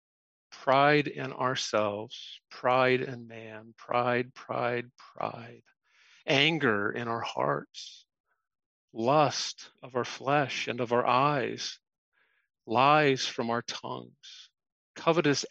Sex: male